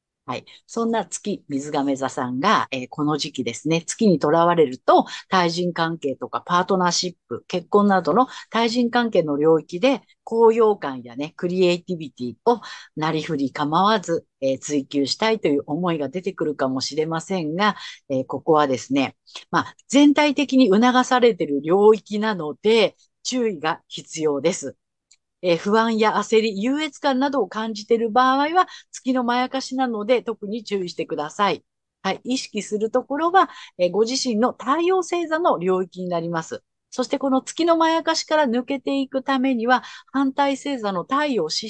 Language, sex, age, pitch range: Japanese, female, 50-69, 165-255 Hz